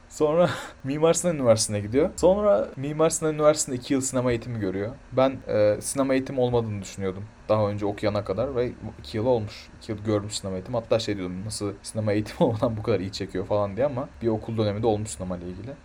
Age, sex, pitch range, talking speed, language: 30-49, male, 105-130 Hz, 205 wpm, Turkish